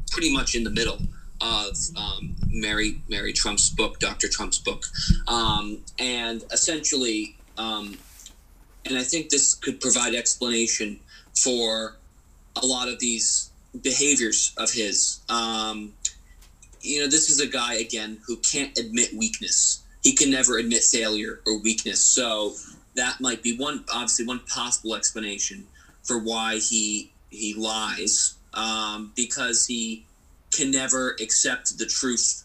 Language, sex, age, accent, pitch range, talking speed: English, male, 20-39, American, 105-125 Hz, 135 wpm